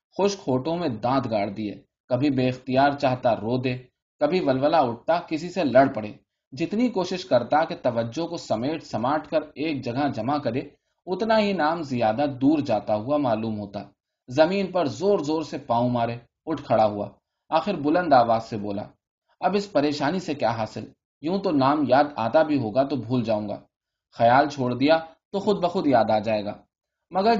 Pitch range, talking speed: 125-170 Hz, 175 wpm